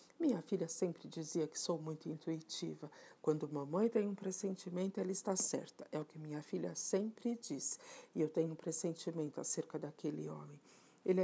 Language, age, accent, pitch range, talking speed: Portuguese, 50-69, Brazilian, 165-200 Hz, 170 wpm